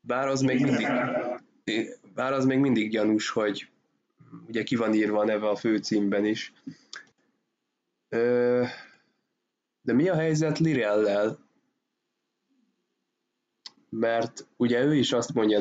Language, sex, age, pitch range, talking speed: Hungarian, male, 20-39, 110-125 Hz, 110 wpm